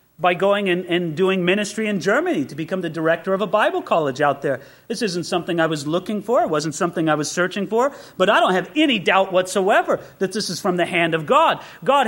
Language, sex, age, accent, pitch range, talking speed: English, male, 40-59, American, 170-270 Hz, 235 wpm